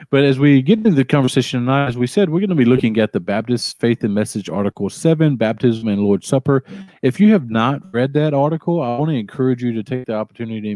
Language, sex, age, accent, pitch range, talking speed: English, male, 40-59, American, 105-130 Hz, 245 wpm